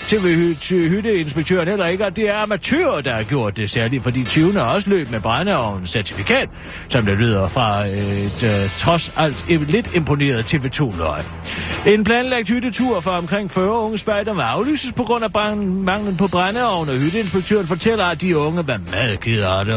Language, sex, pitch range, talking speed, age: Danish, male, 130-210 Hz, 170 wpm, 40-59